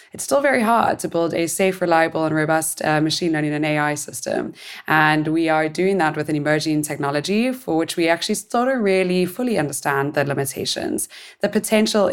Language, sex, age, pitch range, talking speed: English, female, 20-39, 155-190 Hz, 195 wpm